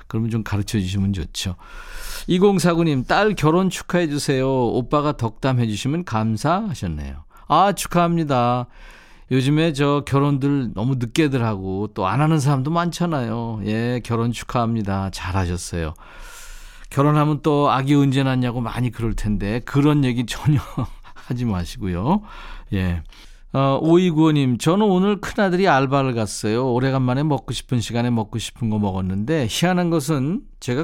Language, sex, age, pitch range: Korean, male, 40-59, 105-155 Hz